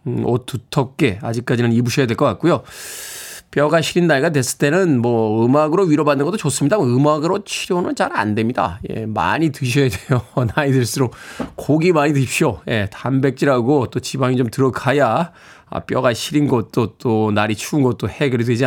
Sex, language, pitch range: male, Korean, 120-170 Hz